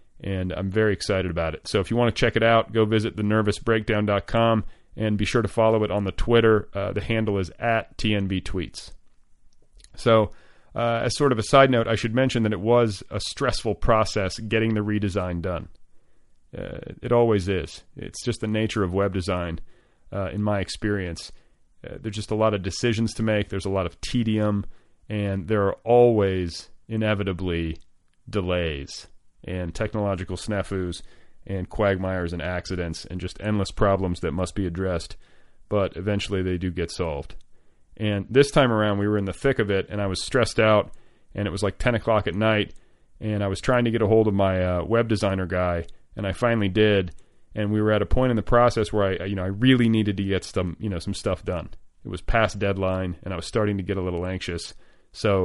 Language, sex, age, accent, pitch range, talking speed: English, male, 30-49, American, 95-110 Hz, 205 wpm